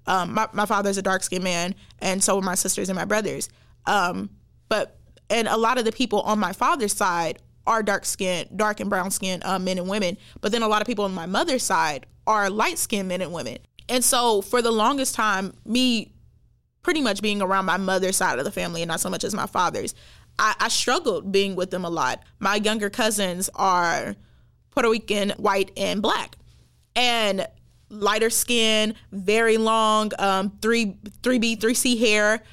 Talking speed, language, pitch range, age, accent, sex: 190 wpm, English, 195-240 Hz, 20-39, American, female